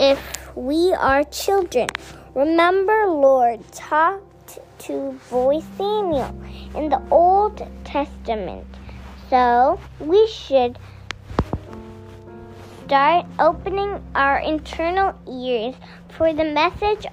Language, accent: English, American